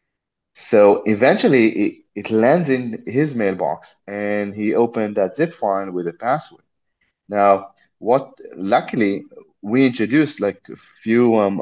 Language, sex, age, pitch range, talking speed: English, male, 30-49, 95-125 Hz, 135 wpm